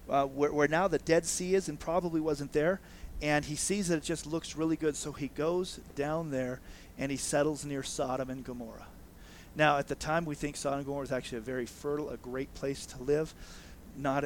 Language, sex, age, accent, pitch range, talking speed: English, male, 40-59, American, 120-150 Hz, 225 wpm